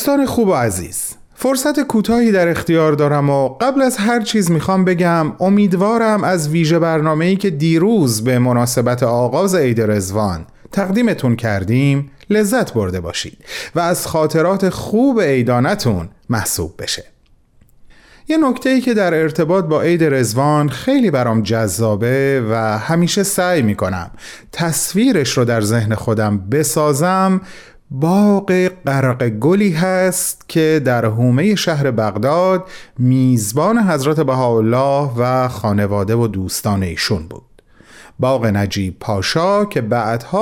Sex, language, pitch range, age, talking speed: male, Persian, 115-180 Hz, 40-59, 120 wpm